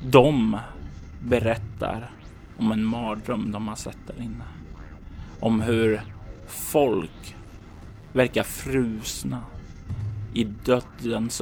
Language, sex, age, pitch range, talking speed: Swedish, male, 30-49, 80-115 Hz, 90 wpm